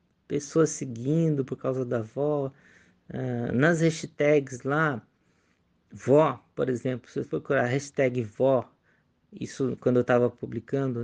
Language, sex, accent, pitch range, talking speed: Portuguese, male, Brazilian, 125-155 Hz, 130 wpm